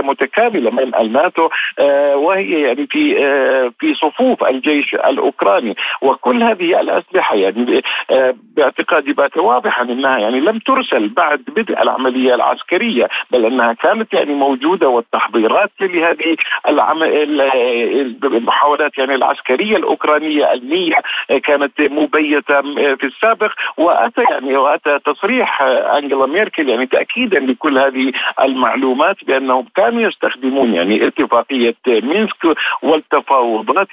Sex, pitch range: male, 130-215 Hz